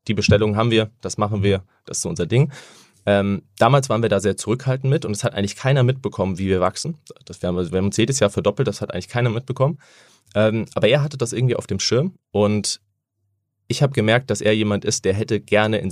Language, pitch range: German, 95-115 Hz